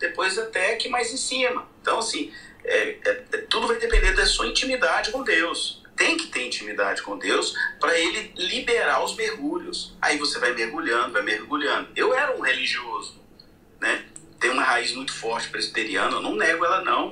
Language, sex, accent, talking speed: Portuguese, male, Brazilian, 180 wpm